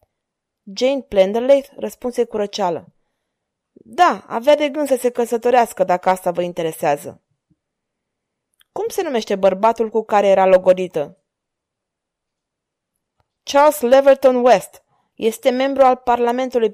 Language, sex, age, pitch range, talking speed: Romanian, female, 20-39, 200-285 Hz, 110 wpm